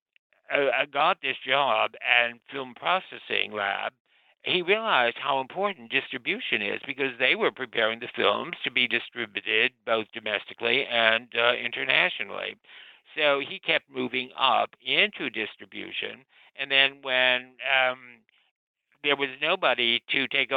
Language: English